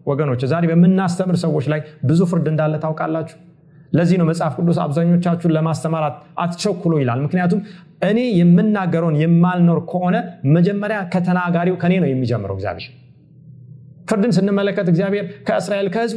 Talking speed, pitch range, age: 110 wpm, 125-180 Hz, 30-49